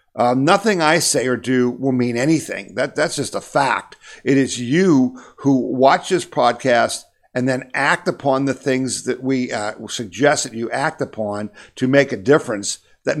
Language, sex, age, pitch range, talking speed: English, male, 50-69, 120-140 Hz, 180 wpm